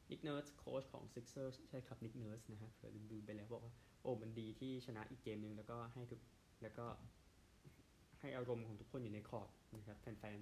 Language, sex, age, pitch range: Thai, male, 20-39, 105-130 Hz